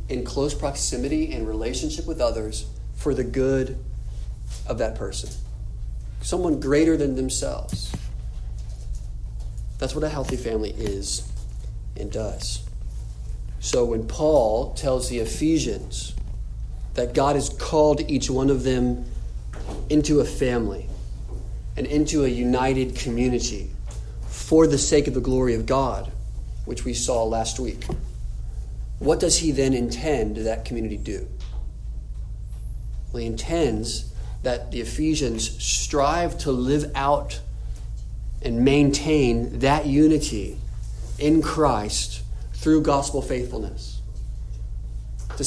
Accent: American